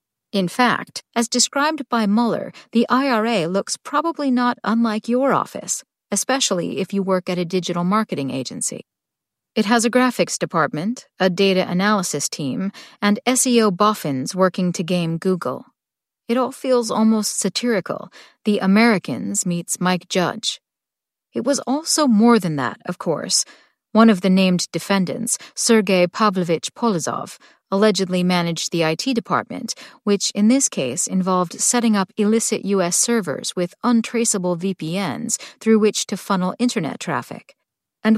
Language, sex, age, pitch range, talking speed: English, female, 40-59, 180-240 Hz, 140 wpm